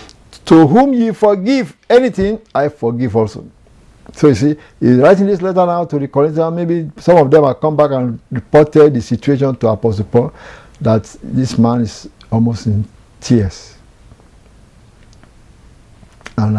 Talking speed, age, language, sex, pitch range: 150 wpm, 60-79, English, male, 110-140 Hz